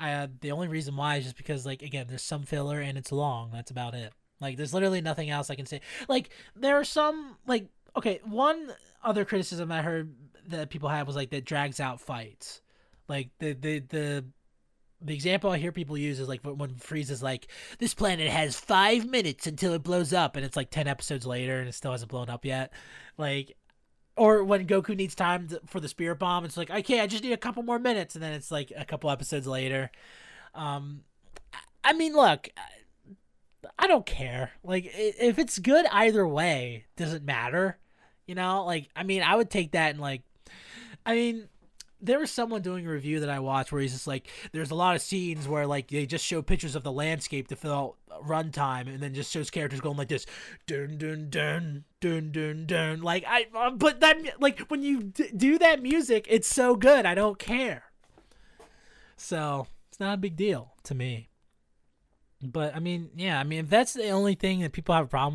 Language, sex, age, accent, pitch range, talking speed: English, male, 20-39, American, 140-195 Hz, 210 wpm